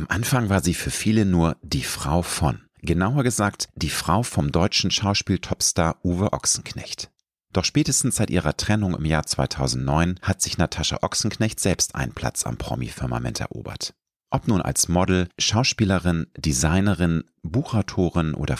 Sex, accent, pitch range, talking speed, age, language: male, German, 80-105 Hz, 145 wpm, 40-59, German